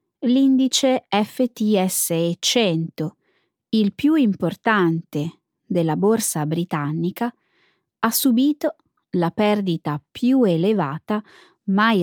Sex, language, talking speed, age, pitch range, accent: female, Italian, 80 wpm, 20-39, 170-255 Hz, native